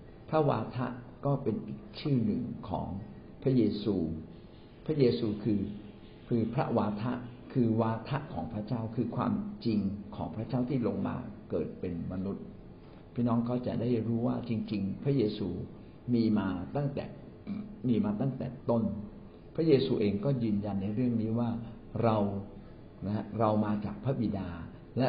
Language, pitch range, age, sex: Thai, 105-120 Hz, 60-79, male